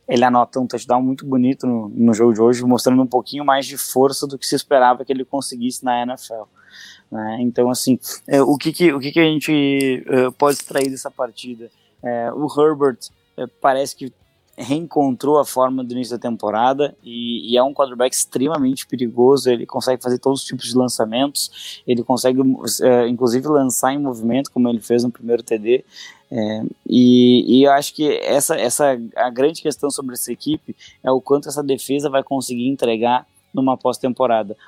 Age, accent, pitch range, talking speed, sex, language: 20-39, Brazilian, 125-135 Hz, 185 wpm, male, English